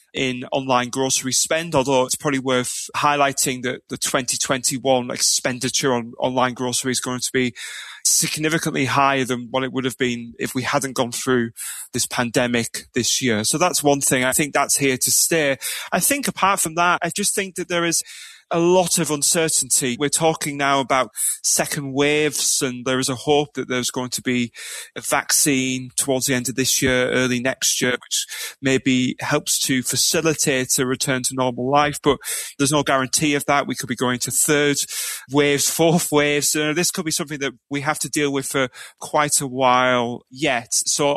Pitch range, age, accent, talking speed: 130-145 Hz, 20-39, British, 190 wpm